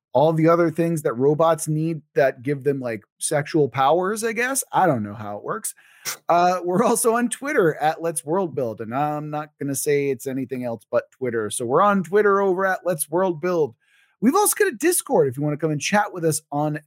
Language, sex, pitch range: English, male, 135-210 Hz